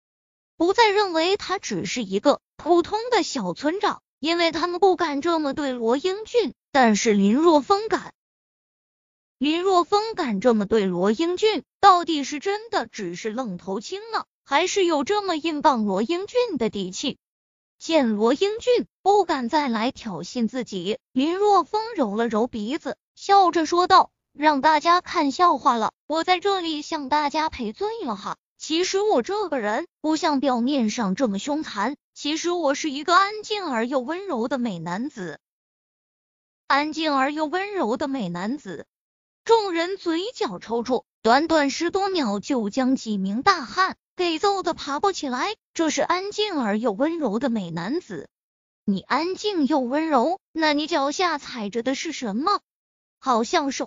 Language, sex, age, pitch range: Chinese, female, 20-39, 245-360 Hz